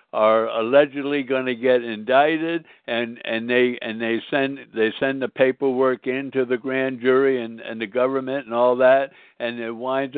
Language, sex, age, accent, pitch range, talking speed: English, male, 60-79, American, 120-145 Hz, 175 wpm